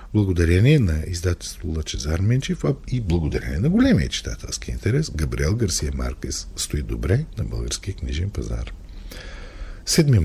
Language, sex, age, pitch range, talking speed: Bulgarian, male, 50-69, 85-130 Hz, 125 wpm